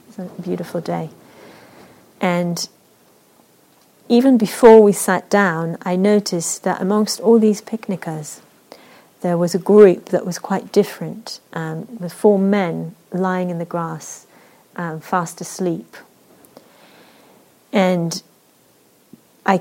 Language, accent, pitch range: English, British, 175-205 Hz